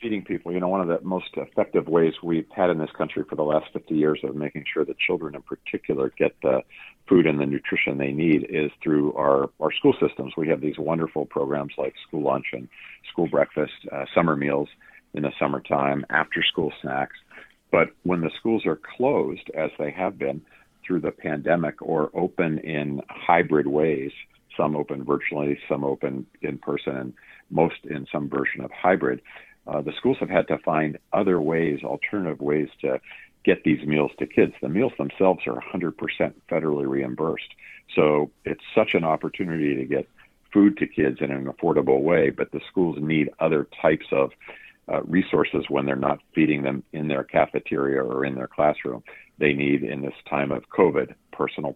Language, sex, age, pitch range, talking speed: English, male, 50-69, 70-80 Hz, 185 wpm